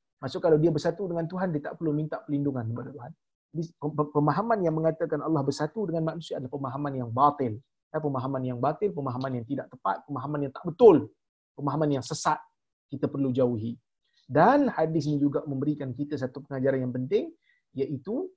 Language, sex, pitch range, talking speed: Malayalam, male, 125-155 Hz, 180 wpm